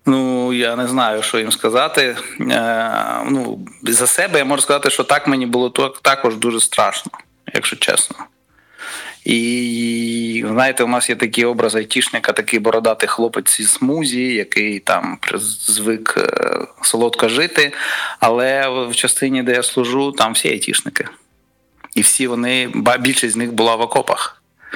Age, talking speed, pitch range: 30-49, 140 wpm, 115-130 Hz